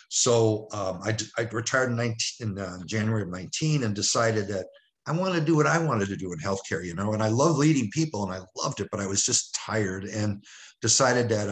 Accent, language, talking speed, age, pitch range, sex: American, English, 225 wpm, 50-69, 100-115 Hz, male